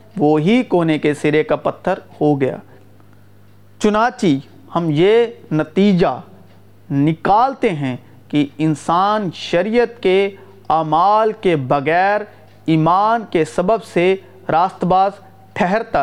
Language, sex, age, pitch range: Urdu, male, 40-59, 150-210 Hz